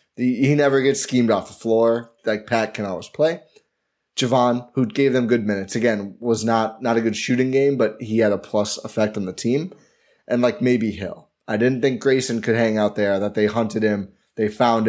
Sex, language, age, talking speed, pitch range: male, English, 20-39, 215 wpm, 110-130 Hz